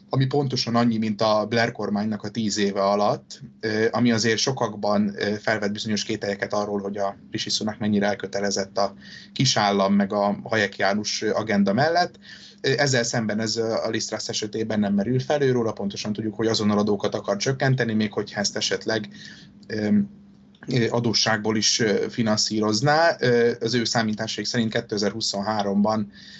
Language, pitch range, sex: Hungarian, 105-120 Hz, male